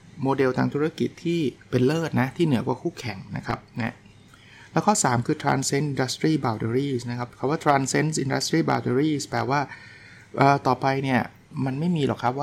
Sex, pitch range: male, 115-145 Hz